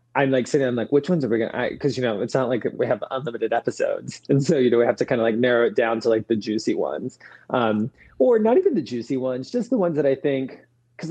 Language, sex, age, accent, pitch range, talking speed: English, male, 20-39, American, 115-135 Hz, 290 wpm